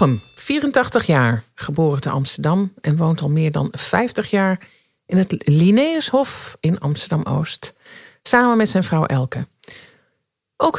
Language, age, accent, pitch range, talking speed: Dutch, 50-69, Dutch, 145-230 Hz, 130 wpm